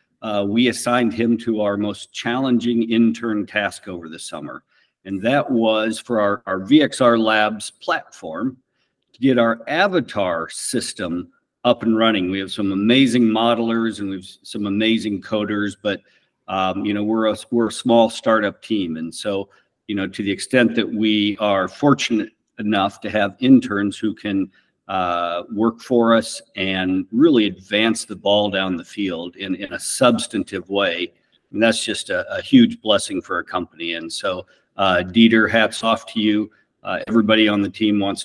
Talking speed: 175 wpm